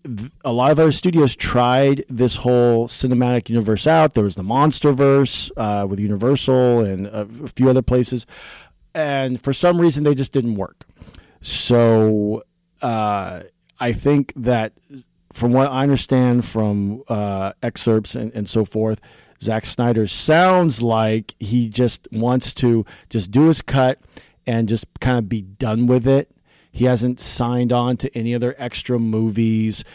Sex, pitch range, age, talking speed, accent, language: male, 110-130 Hz, 40-59, 150 wpm, American, English